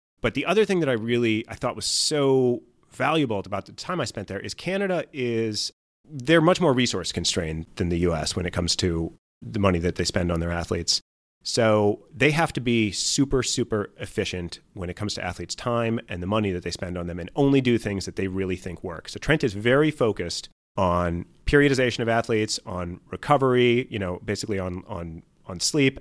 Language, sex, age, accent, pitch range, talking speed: English, male, 30-49, American, 90-125 Hz, 210 wpm